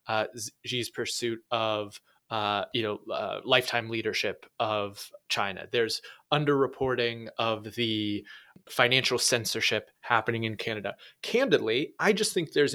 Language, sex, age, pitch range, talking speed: English, male, 20-39, 115-140 Hz, 120 wpm